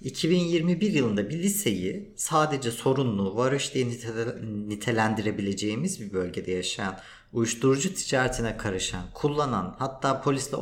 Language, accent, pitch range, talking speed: Turkish, native, 110-165 Hz, 95 wpm